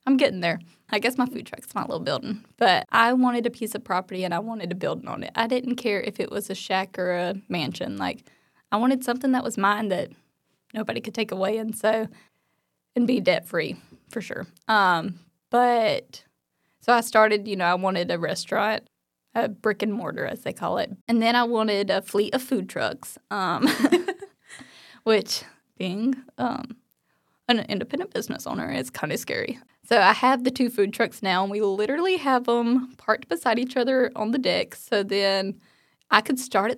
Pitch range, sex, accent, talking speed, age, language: 195-250 Hz, female, American, 200 wpm, 10-29, English